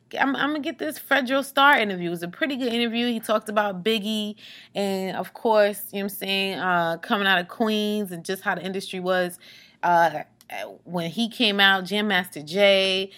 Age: 20-39